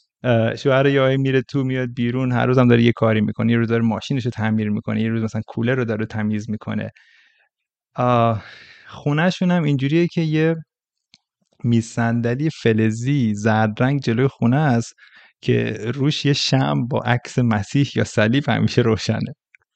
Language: Persian